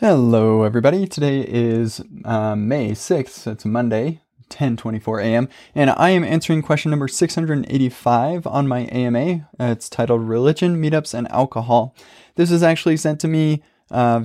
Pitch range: 110-135 Hz